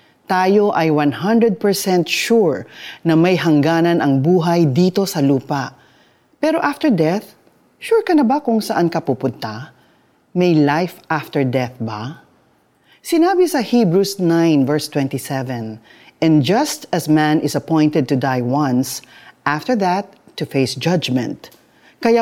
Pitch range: 145-230 Hz